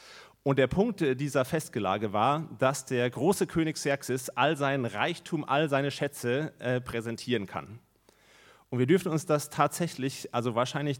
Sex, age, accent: male, 30-49, German